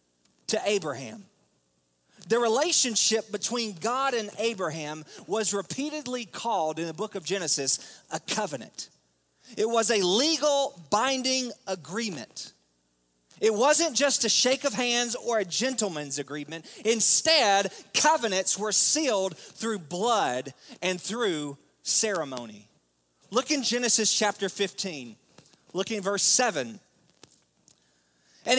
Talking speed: 115 wpm